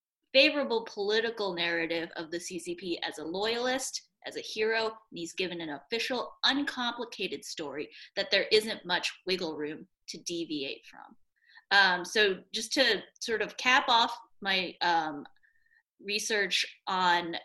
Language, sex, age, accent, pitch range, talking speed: English, female, 20-39, American, 175-220 Hz, 140 wpm